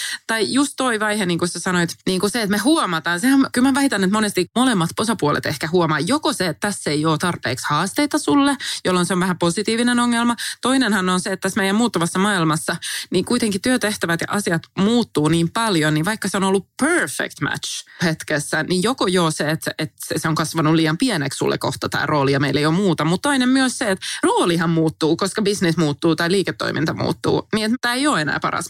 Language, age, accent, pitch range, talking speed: Finnish, 20-39, native, 155-205 Hz, 215 wpm